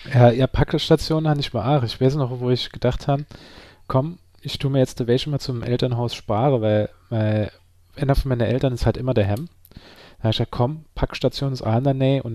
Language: German